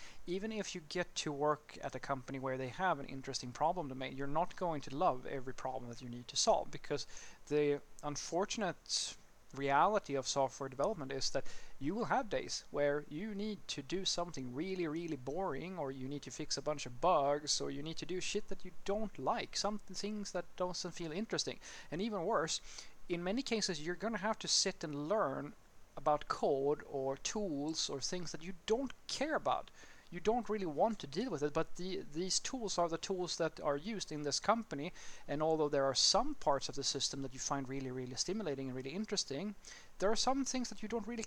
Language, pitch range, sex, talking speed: English, 140-195 Hz, male, 215 wpm